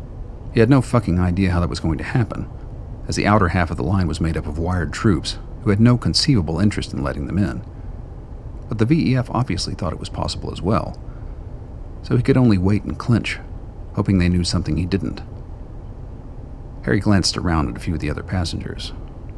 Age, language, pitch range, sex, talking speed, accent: 50-69, English, 85-110 Hz, male, 205 wpm, American